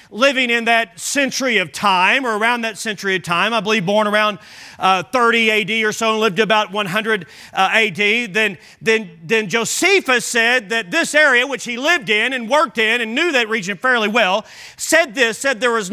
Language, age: English, 40-59